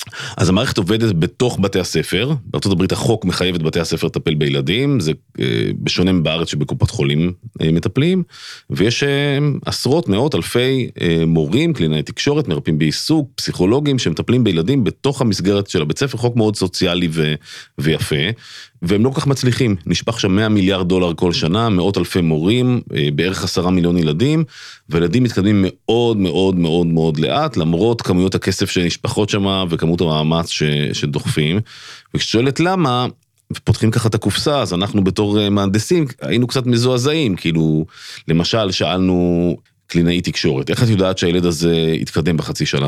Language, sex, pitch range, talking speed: Hebrew, male, 85-120 Hz, 145 wpm